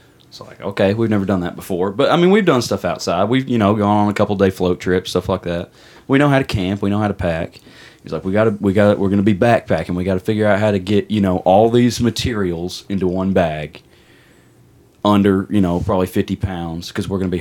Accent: American